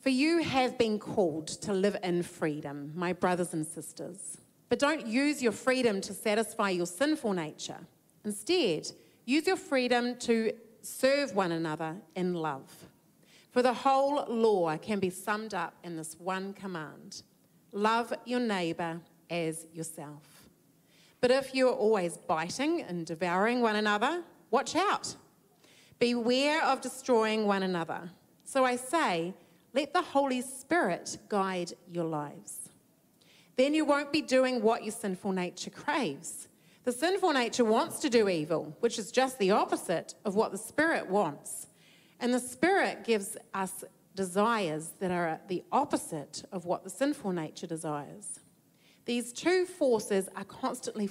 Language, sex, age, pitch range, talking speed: English, female, 30-49, 180-255 Hz, 145 wpm